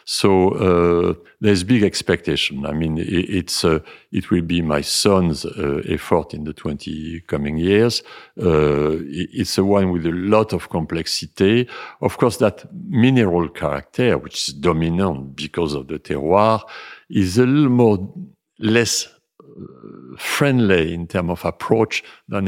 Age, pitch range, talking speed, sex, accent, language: 50-69, 85-110 Hz, 145 wpm, male, French, English